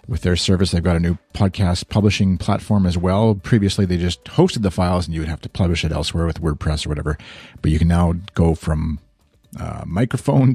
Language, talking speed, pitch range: English, 215 wpm, 85-115 Hz